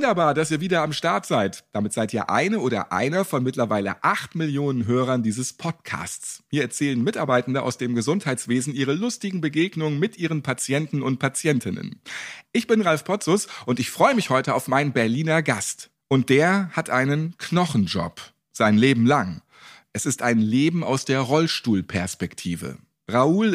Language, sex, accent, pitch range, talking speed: German, male, German, 120-170 Hz, 160 wpm